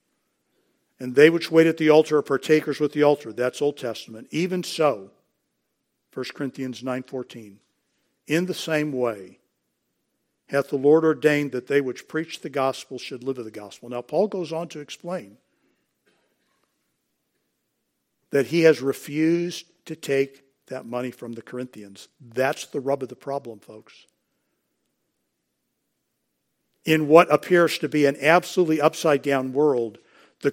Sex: male